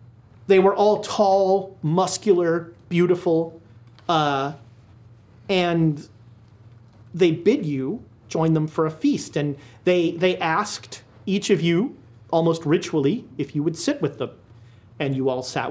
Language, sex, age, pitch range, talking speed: English, male, 30-49, 120-185 Hz, 135 wpm